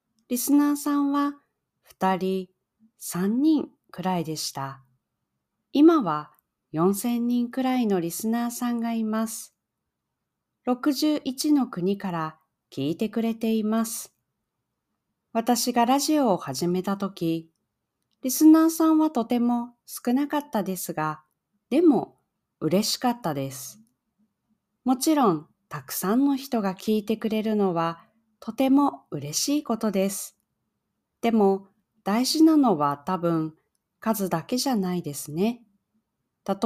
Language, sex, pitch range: Japanese, female, 175-240 Hz